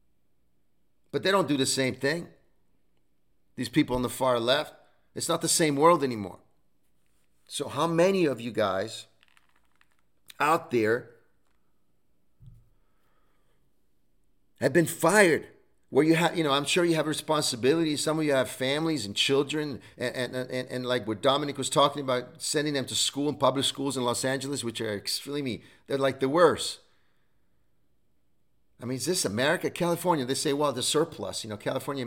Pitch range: 125-165 Hz